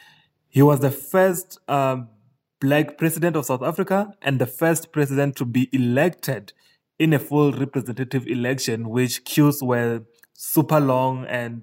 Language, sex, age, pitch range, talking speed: German, male, 20-39, 125-150 Hz, 145 wpm